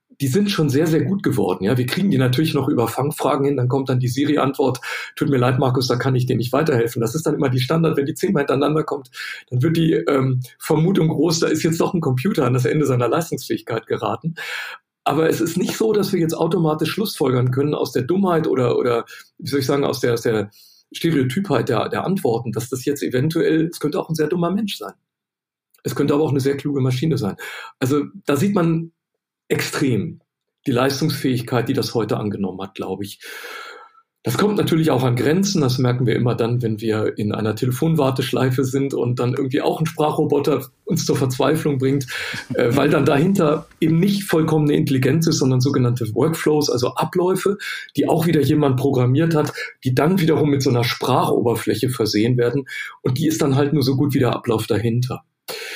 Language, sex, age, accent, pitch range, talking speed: German, male, 50-69, German, 125-160 Hz, 205 wpm